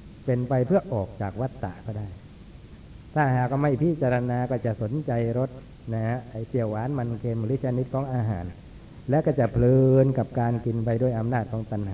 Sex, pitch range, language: male, 110-130 Hz, Thai